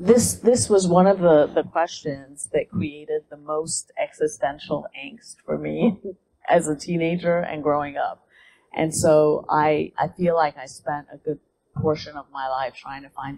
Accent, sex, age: American, female, 30-49